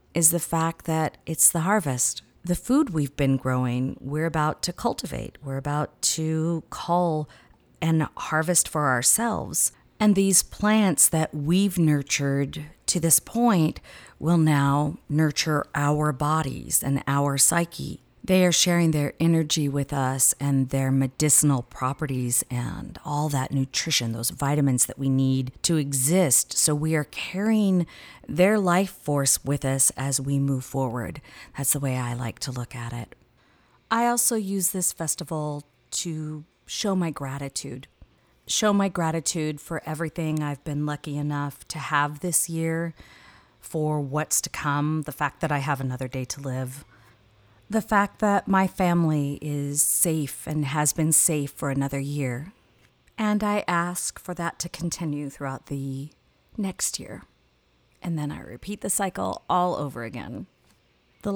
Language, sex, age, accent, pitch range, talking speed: English, female, 40-59, American, 135-170 Hz, 150 wpm